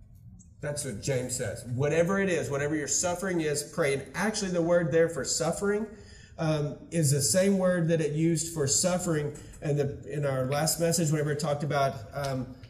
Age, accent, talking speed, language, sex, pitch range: 30-49, American, 185 wpm, English, male, 125-165 Hz